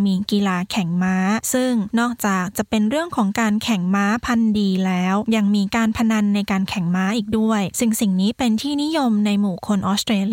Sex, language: female, Thai